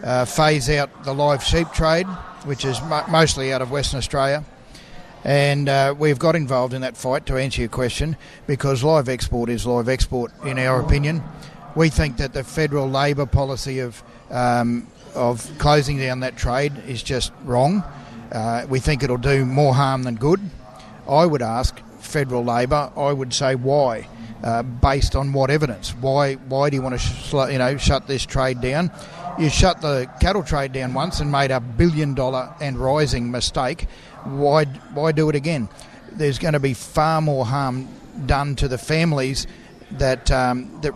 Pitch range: 125-150 Hz